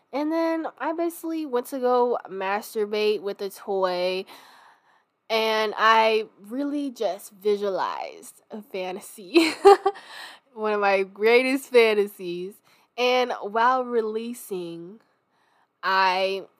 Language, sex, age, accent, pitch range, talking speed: English, female, 10-29, American, 190-250 Hz, 100 wpm